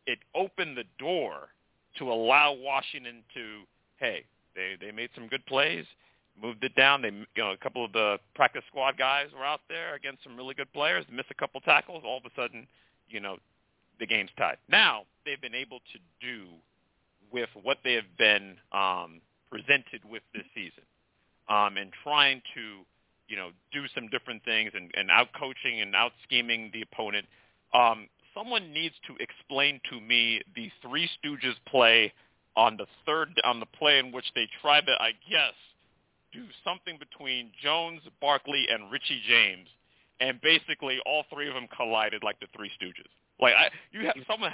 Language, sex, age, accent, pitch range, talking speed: English, male, 40-59, American, 115-145 Hz, 175 wpm